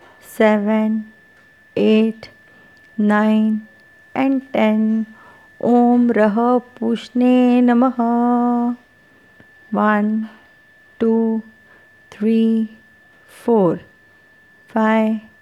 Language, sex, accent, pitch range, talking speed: English, female, Indian, 220-250 Hz, 55 wpm